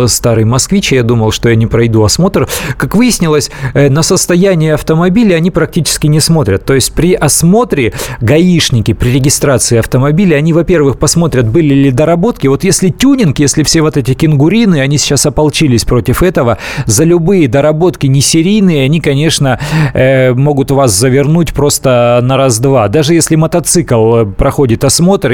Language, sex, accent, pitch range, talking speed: Russian, male, native, 125-160 Hz, 145 wpm